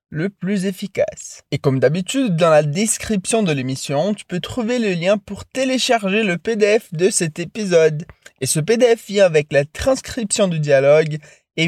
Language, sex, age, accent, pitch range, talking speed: Portuguese, male, 20-39, French, 160-220 Hz, 170 wpm